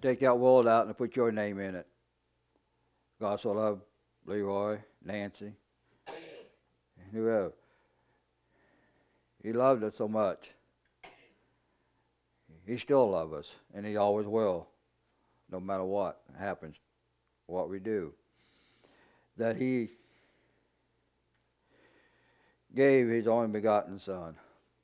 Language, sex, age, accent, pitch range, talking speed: English, male, 60-79, American, 100-125 Hz, 105 wpm